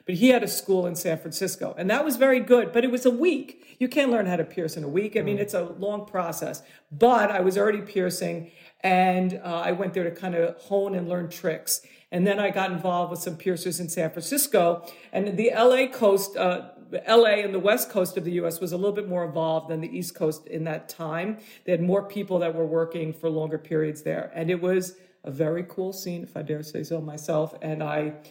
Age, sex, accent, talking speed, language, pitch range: 50-69, female, American, 240 wpm, English, 170-200 Hz